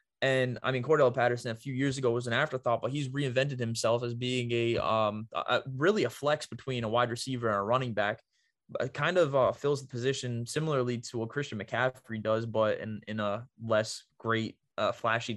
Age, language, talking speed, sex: 20-39, English, 205 wpm, male